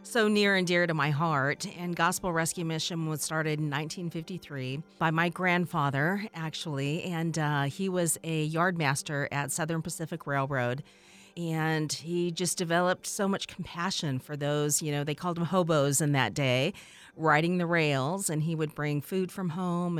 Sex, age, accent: female, 40-59, American